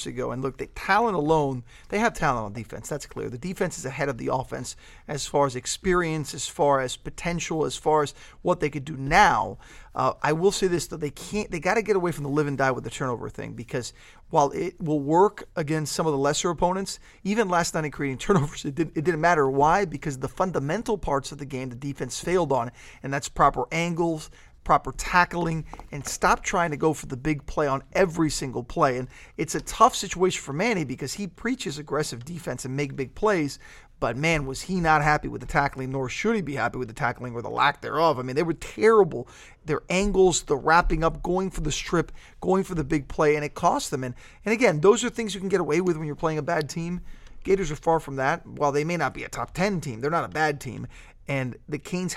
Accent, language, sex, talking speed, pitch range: American, English, male, 240 wpm, 135-175 Hz